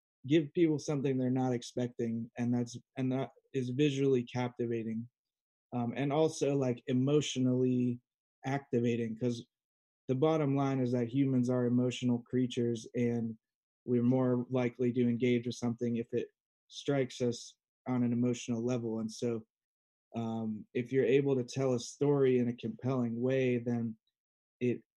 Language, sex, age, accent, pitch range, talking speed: English, male, 20-39, American, 120-135 Hz, 145 wpm